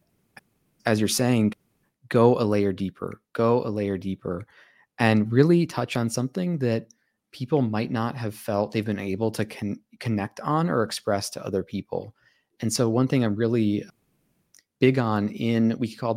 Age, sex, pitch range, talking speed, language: 20-39, male, 105-125 Hz, 165 wpm, English